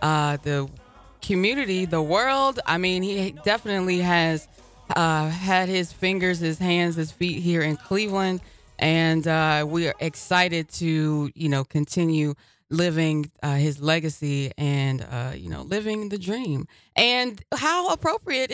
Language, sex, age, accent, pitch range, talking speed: English, female, 20-39, American, 160-205 Hz, 140 wpm